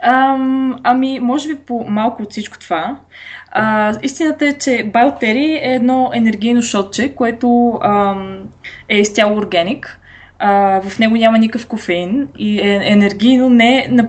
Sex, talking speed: female, 135 wpm